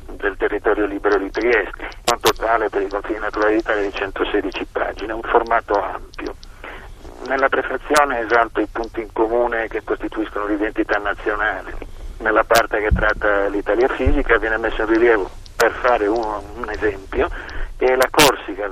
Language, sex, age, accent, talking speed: Italian, male, 40-59, native, 155 wpm